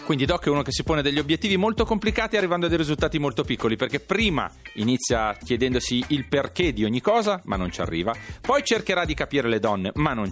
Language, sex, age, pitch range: Italian, male, 40-59, 105-165 Hz